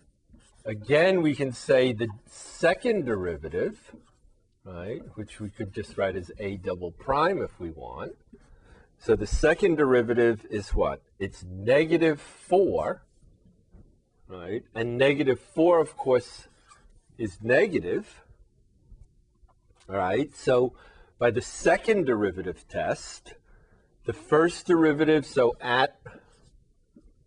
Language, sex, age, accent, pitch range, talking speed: English, male, 40-59, American, 100-140 Hz, 110 wpm